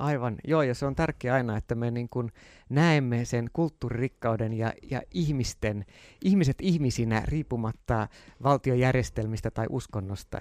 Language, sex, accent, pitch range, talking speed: Finnish, male, native, 110-145 Hz, 125 wpm